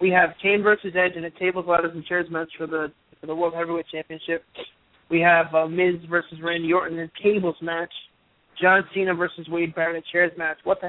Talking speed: 225 wpm